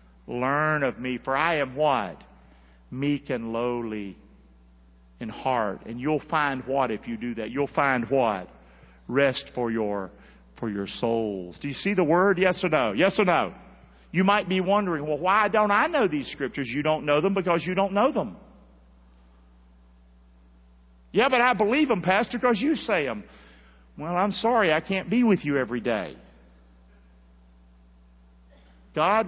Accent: American